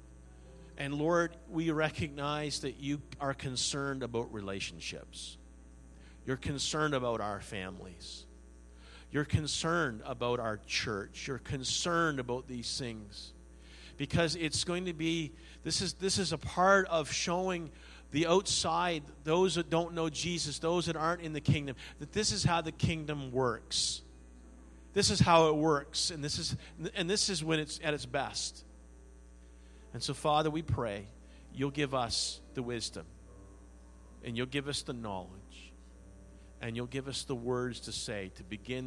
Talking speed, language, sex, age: 155 wpm, English, male, 50-69